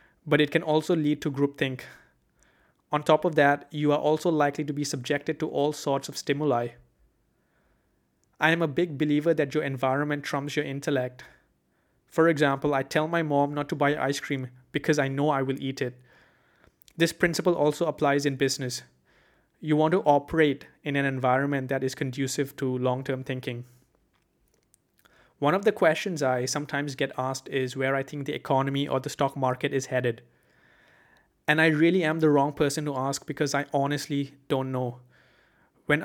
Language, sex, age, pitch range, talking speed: English, male, 20-39, 135-155 Hz, 175 wpm